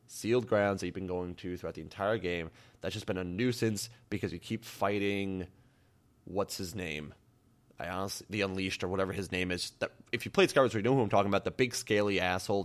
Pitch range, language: 95-130 Hz, English